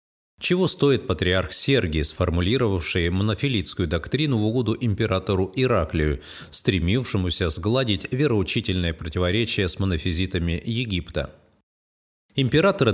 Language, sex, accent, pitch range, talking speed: Russian, male, native, 90-120 Hz, 90 wpm